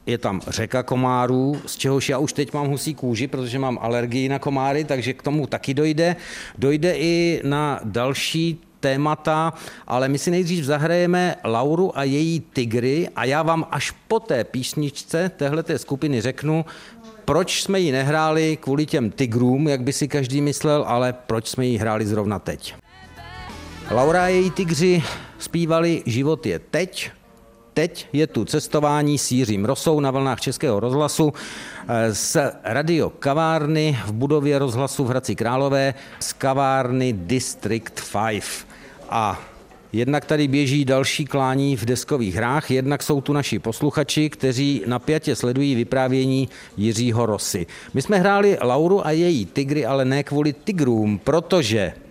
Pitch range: 125-155 Hz